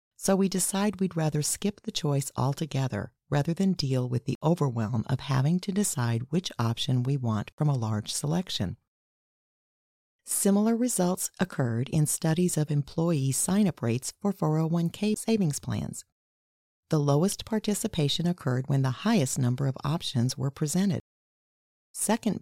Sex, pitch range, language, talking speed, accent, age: female, 125-185 Hz, English, 140 wpm, American, 40-59